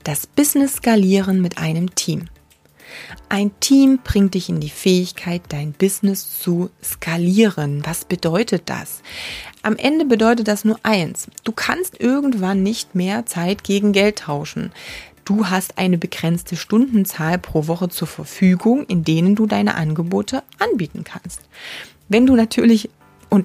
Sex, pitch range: female, 175-230 Hz